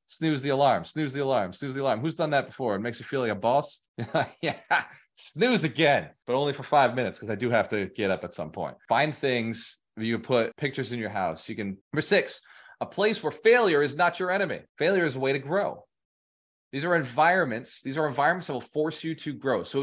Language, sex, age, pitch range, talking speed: English, male, 20-39, 110-150 Hz, 235 wpm